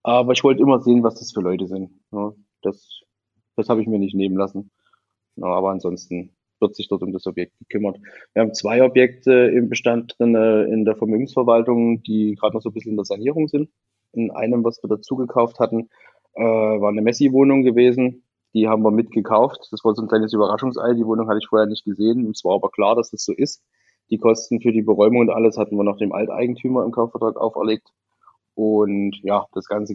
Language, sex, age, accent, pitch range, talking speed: German, male, 20-39, German, 105-120 Hz, 205 wpm